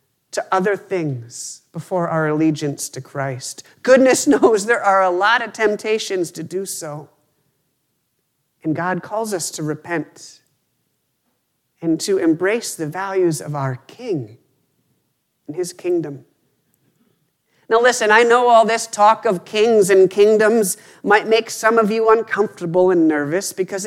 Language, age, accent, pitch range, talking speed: English, 50-69, American, 155-215 Hz, 140 wpm